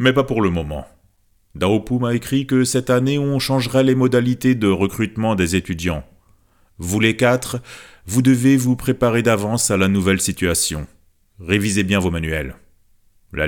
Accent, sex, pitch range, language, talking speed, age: French, male, 85-125 Hz, French, 160 wpm, 40-59